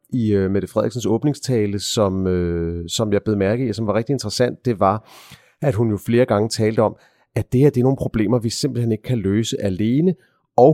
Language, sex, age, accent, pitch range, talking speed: Danish, male, 30-49, native, 105-125 Hz, 200 wpm